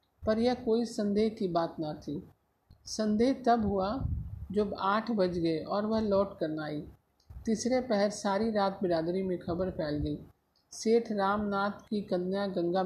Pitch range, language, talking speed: 175-225 Hz, Hindi, 165 wpm